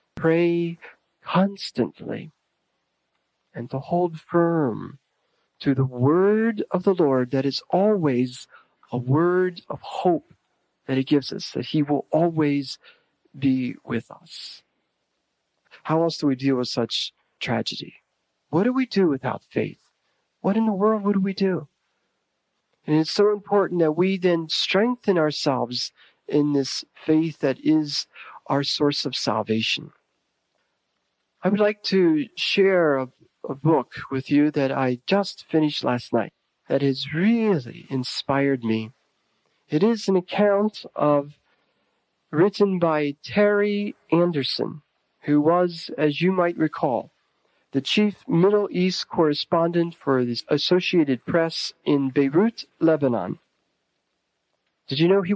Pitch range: 140-185 Hz